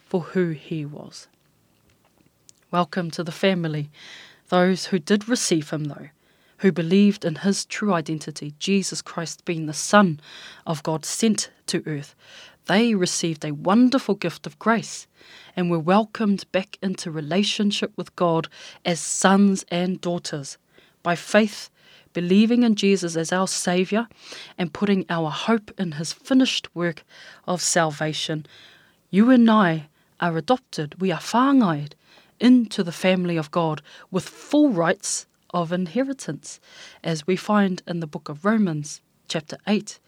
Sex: female